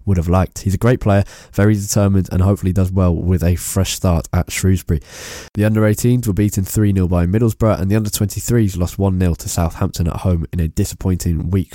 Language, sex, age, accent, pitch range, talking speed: English, male, 20-39, British, 85-100 Hz, 220 wpm